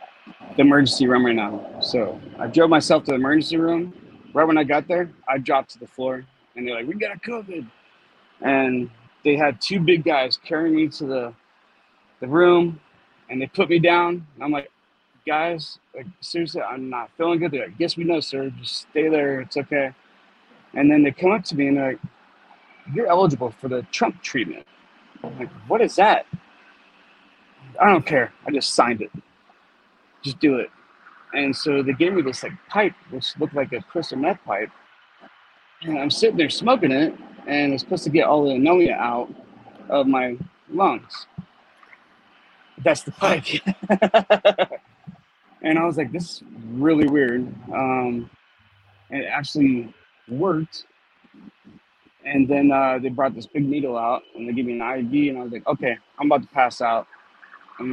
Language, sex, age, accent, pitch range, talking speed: English, male, 30-49, American, 130-170 Hz, 180 wpm